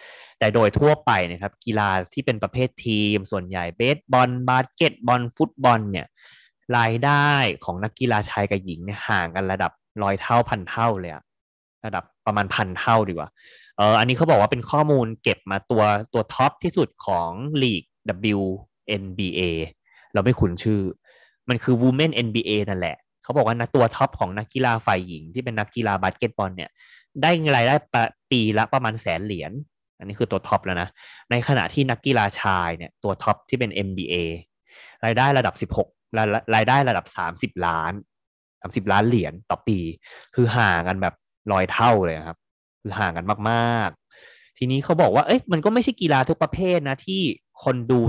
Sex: male